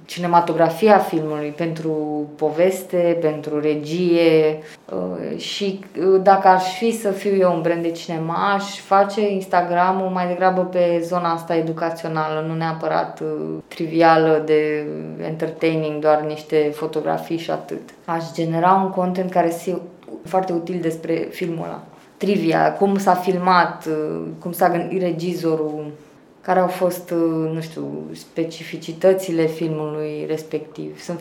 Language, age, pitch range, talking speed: Romanian, 20-39, 160-185 Hz, 125 wpm